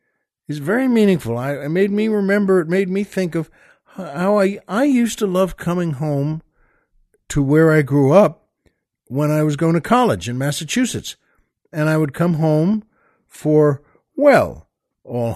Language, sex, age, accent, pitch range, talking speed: English, male, 60-79, American, 140-185 Hz, 165 wpm